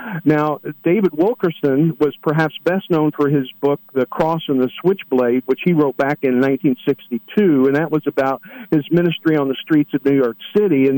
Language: English